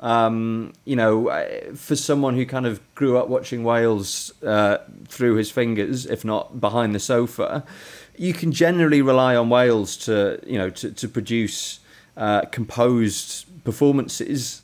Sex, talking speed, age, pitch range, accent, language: male, 150 wpm, 30-49, 105-120 Hz, British, English